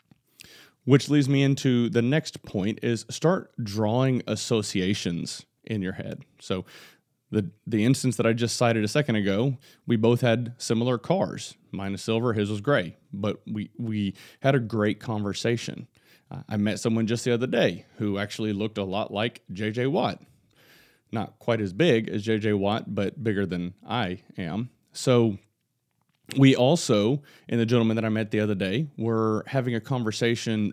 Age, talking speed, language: 30-49, 170 wpm, English